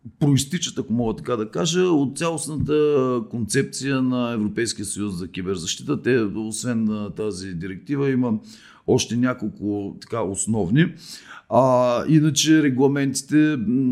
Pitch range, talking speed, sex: 95-135 Hz, 110 wpm, male